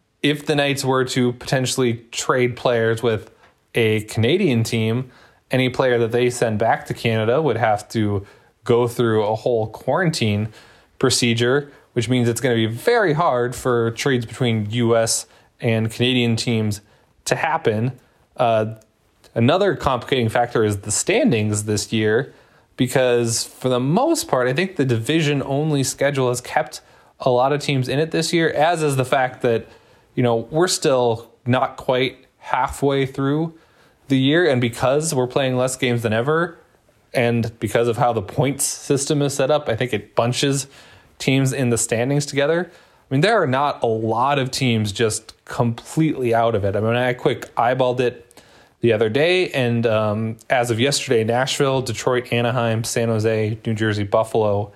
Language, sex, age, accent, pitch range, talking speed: English, male, 20-39, American, 115-135 Hz, 170 wpm